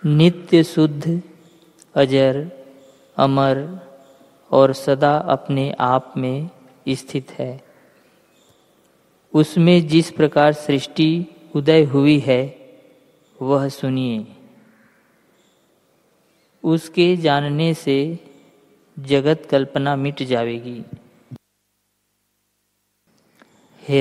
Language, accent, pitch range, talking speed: Hindi, native, 130-155 Hz, 70 wpm